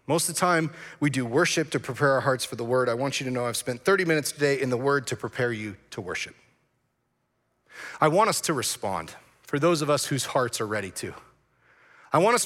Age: 40-59